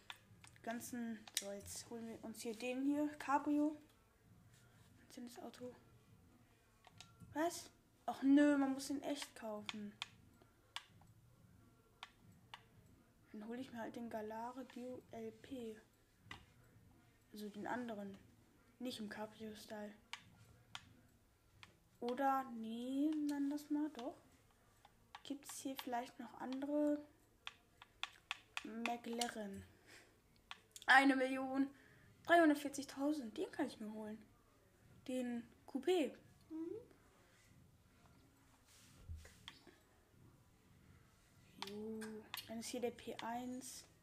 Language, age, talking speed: German, 10-29, 85 wpm